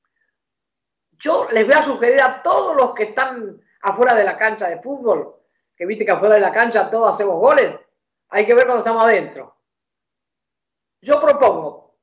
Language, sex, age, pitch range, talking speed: Spanish, female, 50-69, 220-285 Hz, 170 wpm